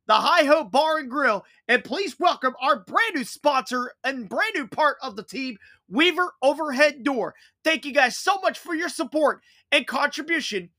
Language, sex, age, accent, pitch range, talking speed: English, male, 30-49, American, 255-345 Hz, 185 wpm